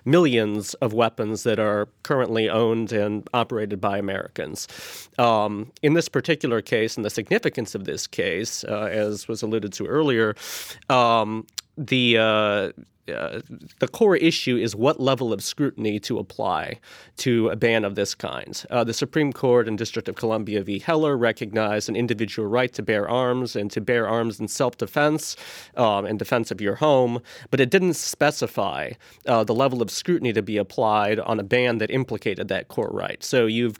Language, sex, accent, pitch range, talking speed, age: English, male, American, 110-130 Hz, 175 wpm, 30-49